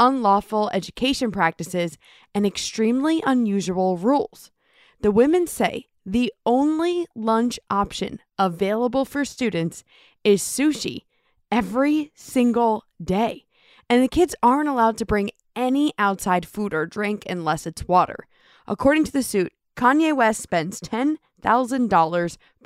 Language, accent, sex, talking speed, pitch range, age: English, American, female, 120 wpm, 185-250 Hz, 20-39